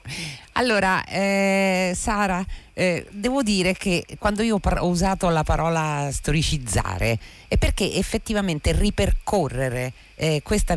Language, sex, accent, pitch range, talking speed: Italian, female, native, 120-165 Hz, 115 wpm